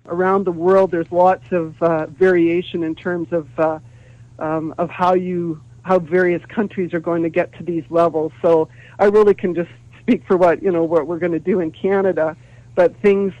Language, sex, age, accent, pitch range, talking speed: English, male, 50-69, American, 155-180 Hz, 200 wpm